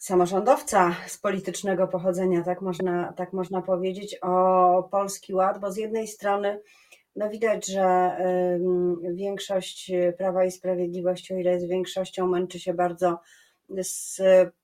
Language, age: Polish, 30-49